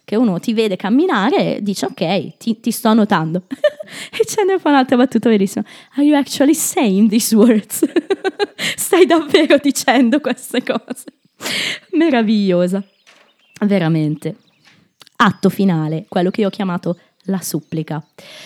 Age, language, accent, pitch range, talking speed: 20-39, Italian, native, 170-235 Hz, 135 wpm